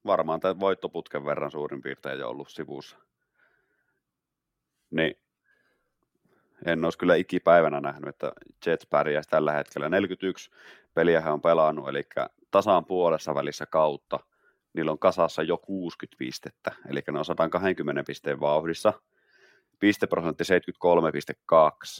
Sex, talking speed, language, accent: male, 120 wpm, Finnish, native